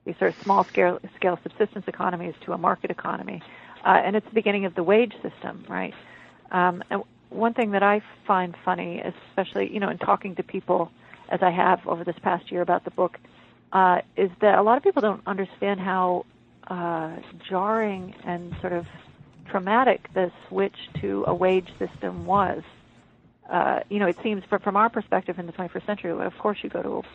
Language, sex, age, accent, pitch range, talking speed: English, female, 50-69, American, 175-200 Hz, 190 wpm